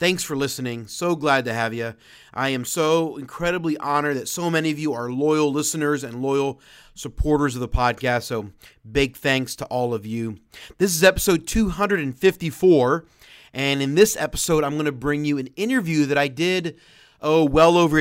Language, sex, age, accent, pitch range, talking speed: English, male, 30-49, American, 135-165 Hz, 185 wpm